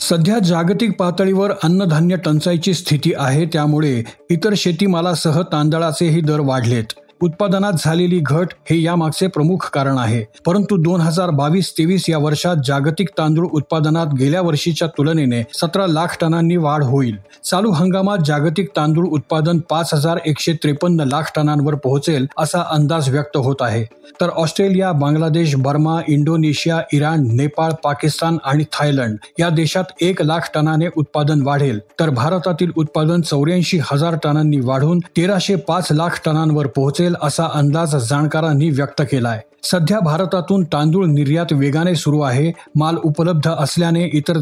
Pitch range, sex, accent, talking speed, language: 145-170 Hz, male, native, 125 wpm, Marathi